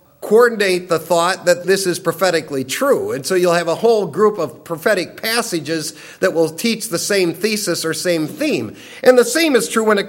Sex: male